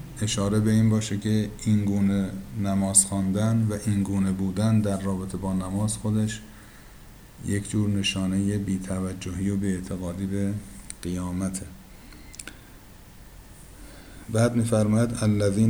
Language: Persian